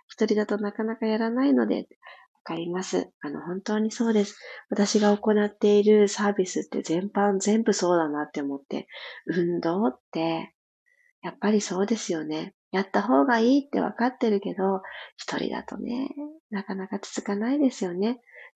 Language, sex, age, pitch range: Japanese, female, 40-59, 190-250 Hz